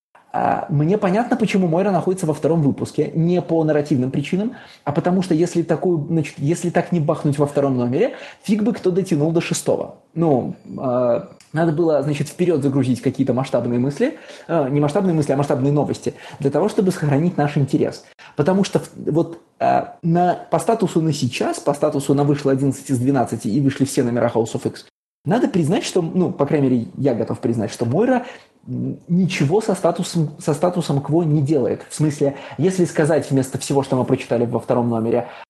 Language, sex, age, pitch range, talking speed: Russian, male, 20-39, 135-175 Hz, 185 wpm